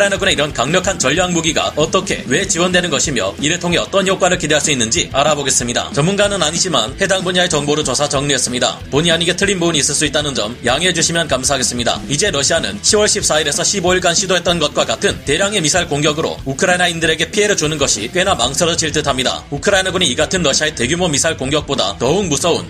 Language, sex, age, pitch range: Korean, male, 30-49, 145-190 Hz